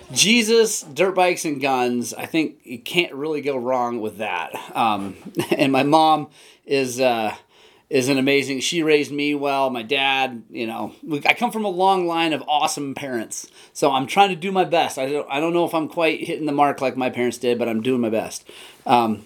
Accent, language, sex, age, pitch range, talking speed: American, English, male, 30-49, 120-170 Hz, 210 wpm